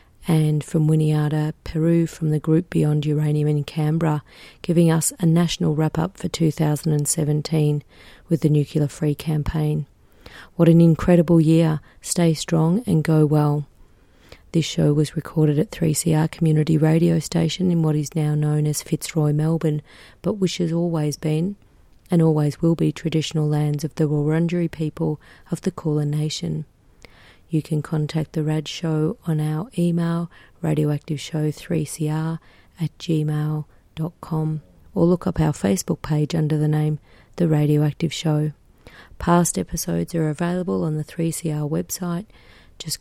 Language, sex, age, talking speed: English, female, 30-49, 145 wpm